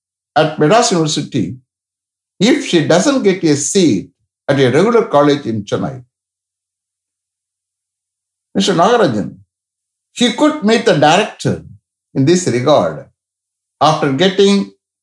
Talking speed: 110 wpm